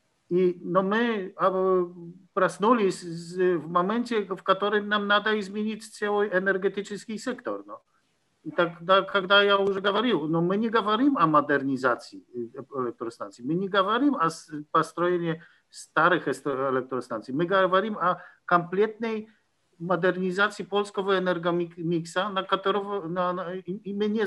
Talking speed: 120 wpm